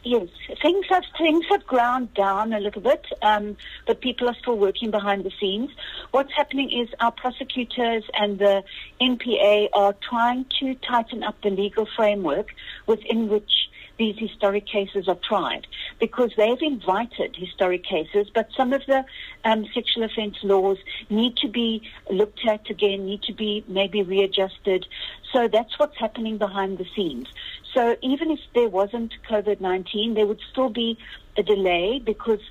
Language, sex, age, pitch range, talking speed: English, female, 60-79, 200-240 Hz, 160 wpm